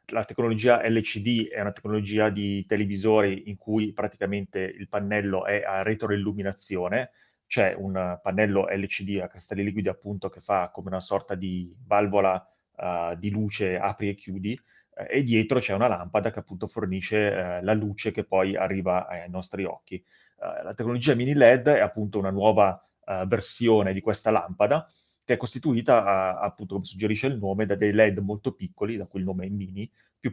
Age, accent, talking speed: 30-49, native, 165 wpm